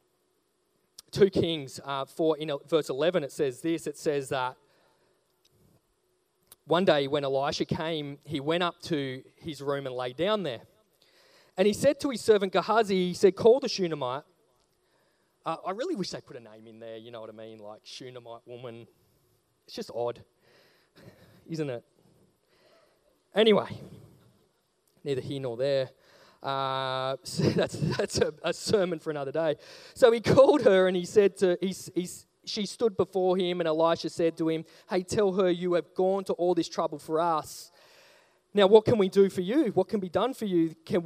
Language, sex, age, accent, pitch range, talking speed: English, male, 20-39, Australian, 140-195 Hz, 185 wpm